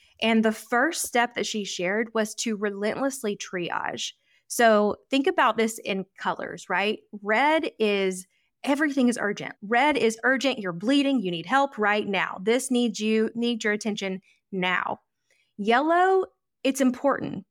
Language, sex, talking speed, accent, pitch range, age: English, female, 145 wpm, American, 195-250 Hz, 20-39